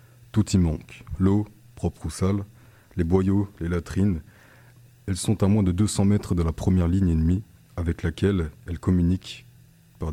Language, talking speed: French, 165 wpm